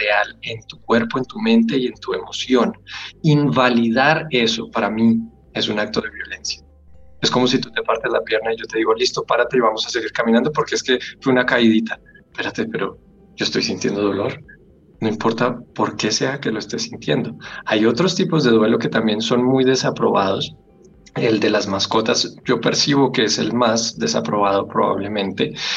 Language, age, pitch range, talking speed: Spanish, 20-39, 110-130 Hz, 190 wpm